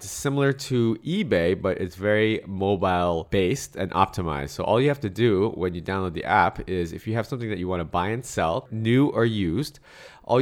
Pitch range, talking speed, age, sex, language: 95-125 Hz, 215 wpm, 30-49, male, English